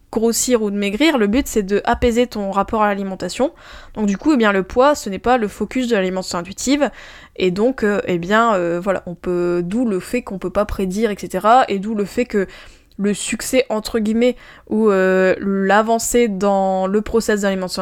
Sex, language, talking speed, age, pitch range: female, French, 200 wpm, 20-39, 195-250 Hz